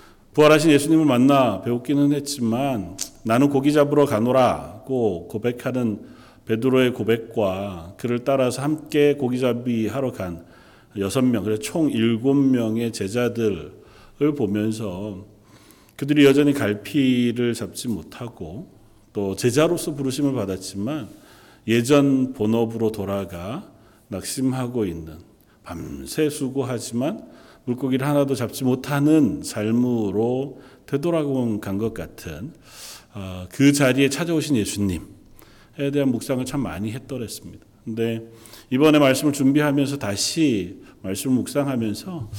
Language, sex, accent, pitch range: Korean, male, native, 105-140 Hz